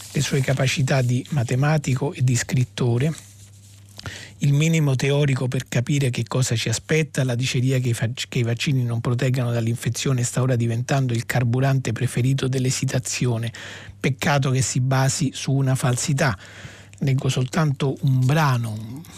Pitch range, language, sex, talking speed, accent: 120-145 Hz, Italian, male, 140 wpm, native